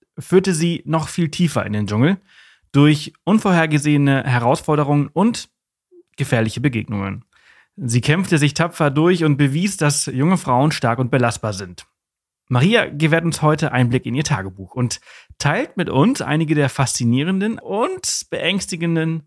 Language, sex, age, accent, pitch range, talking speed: German, male, 30-49, German, 125-160 Hz, 145 wpm